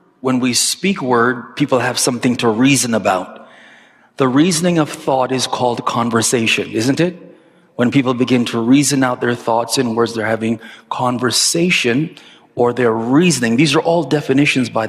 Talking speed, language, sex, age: 160 wpm, English, male, 40-59